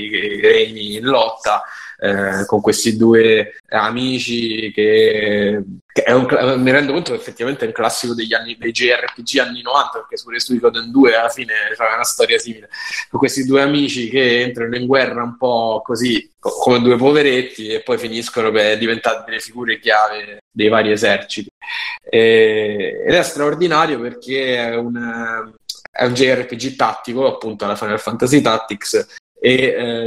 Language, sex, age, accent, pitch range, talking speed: Italian, male, 20-39, native, 110-135 Hz, 165 wpm